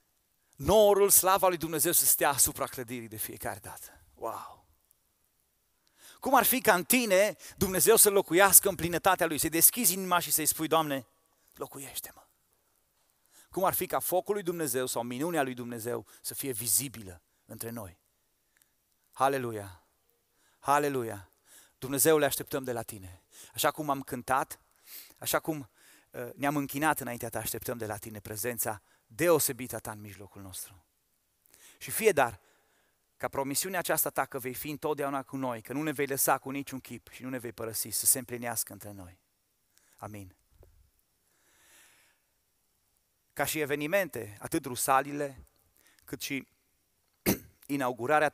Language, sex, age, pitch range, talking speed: Romanian, male, 30-49, 110-155 Hz, 145 wpm